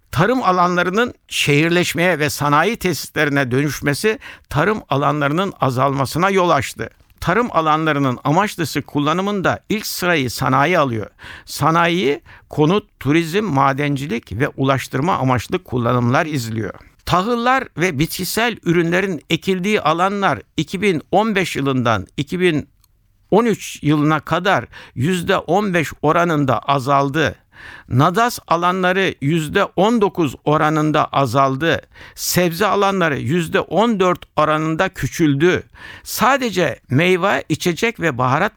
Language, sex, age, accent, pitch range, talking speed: Turkish, male, 60-79, native, 140-185 Hz, 90 wpm